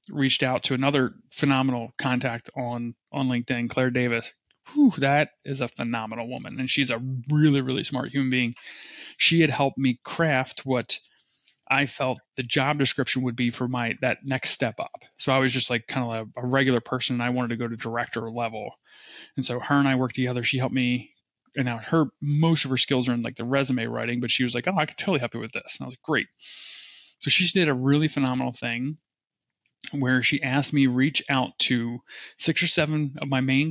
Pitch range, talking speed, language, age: 125-145 Hz, 220 wpm, English, 30-49